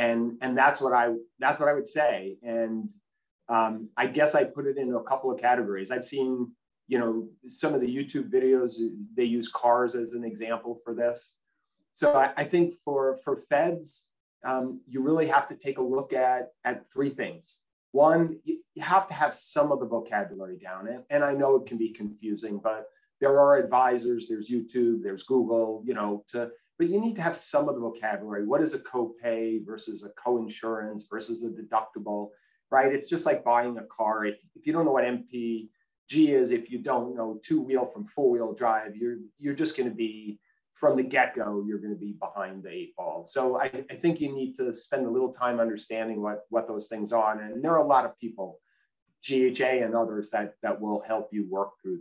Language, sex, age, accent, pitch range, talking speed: English, male, 30-49, American, 110-145 Hz, 210 wpm